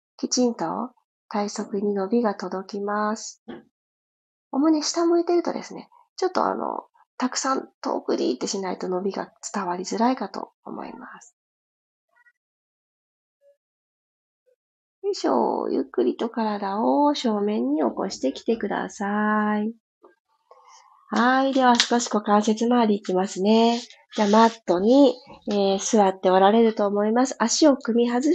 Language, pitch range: Japanese, 205-280 Hz